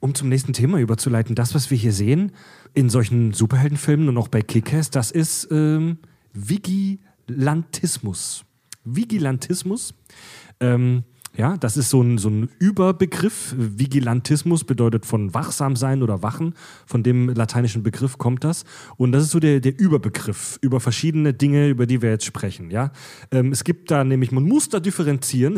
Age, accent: 40-59, German